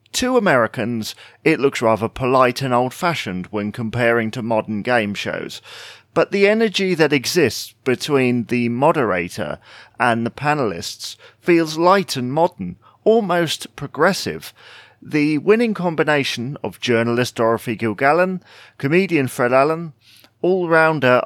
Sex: male